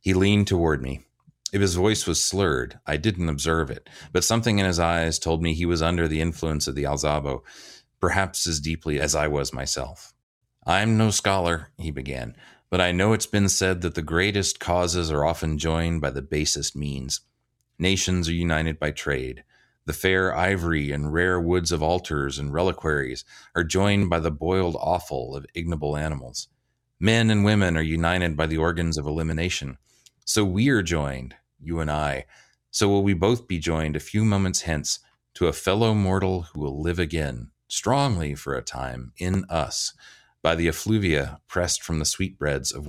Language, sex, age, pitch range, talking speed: English, male, 30-49, 75-95 Hz, 180 wpm